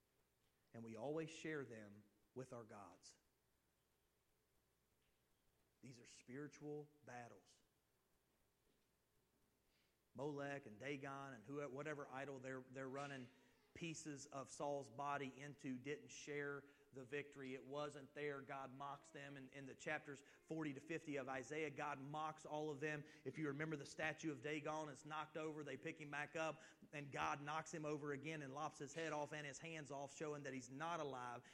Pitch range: 130-150 Hz